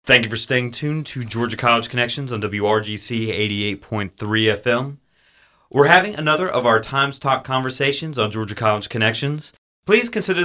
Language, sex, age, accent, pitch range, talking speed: English, male, 30-49, American, 115-175 Hz, 155 wpm